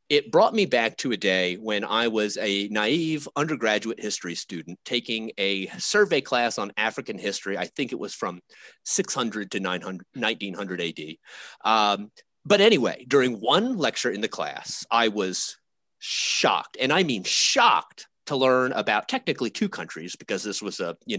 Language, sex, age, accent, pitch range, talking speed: English, male, 30-49, American, 100-130 Hz, 165 wpm